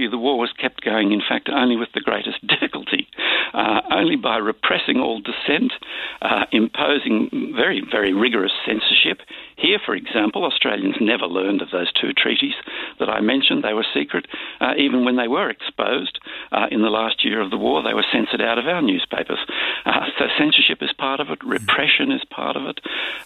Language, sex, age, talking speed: English, male, 60-79, 190 wpm